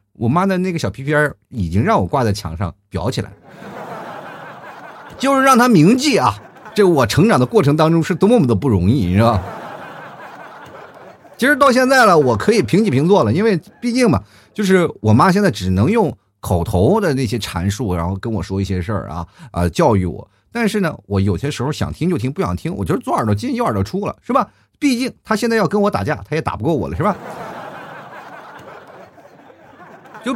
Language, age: Chinese, 30-49